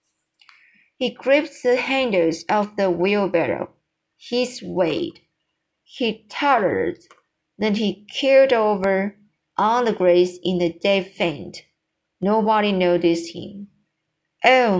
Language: Chinese